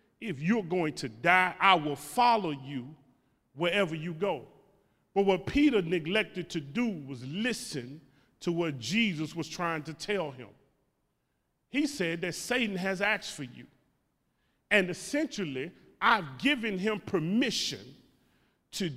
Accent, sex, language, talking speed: American, male, English, 135 wpm